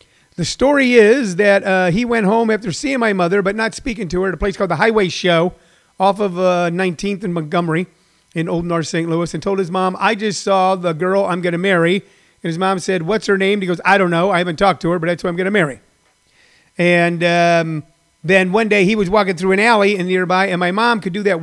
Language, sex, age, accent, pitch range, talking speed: English, male, 40-59, American, 175-205 Hz, 250 wpm